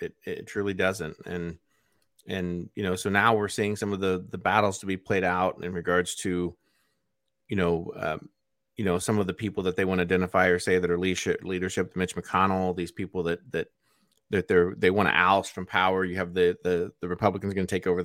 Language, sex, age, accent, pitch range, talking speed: English, male, 30-49, American, 90-105 Hz, 225 wpm